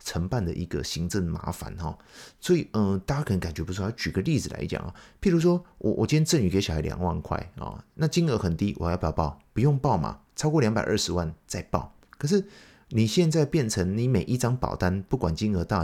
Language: Chinese